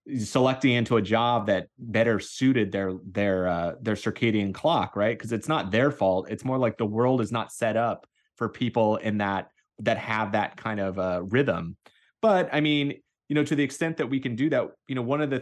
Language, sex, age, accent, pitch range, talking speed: English, male, 30-49, American, 110-135 Hz, 220 wpm